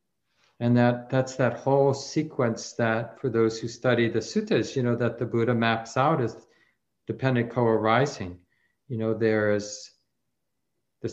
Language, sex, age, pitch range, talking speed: English, male, 50-69, 110-130 Hz, 150 wpm